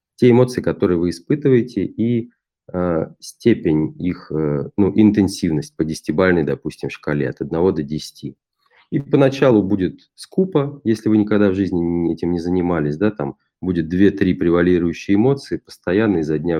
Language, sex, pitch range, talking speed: Russian, male, 80-110 Hz, 150 wpm